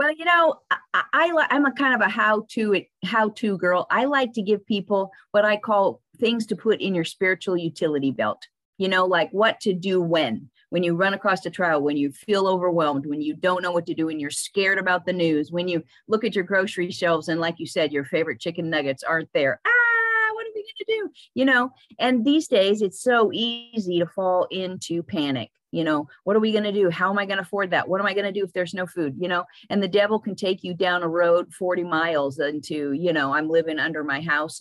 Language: English